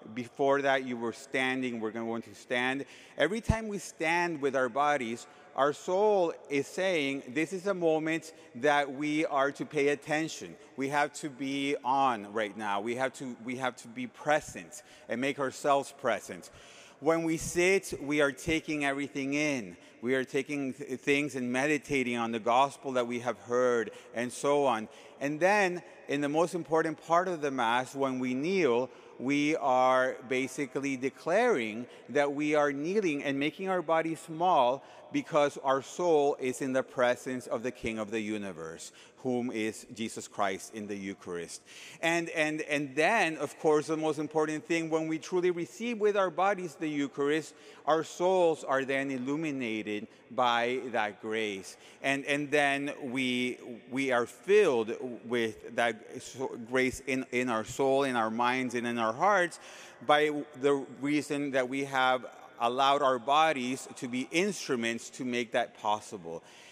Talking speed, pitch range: 165 wpm, 125-155 Hz